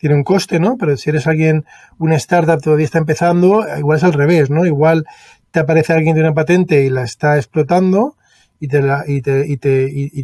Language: Spanish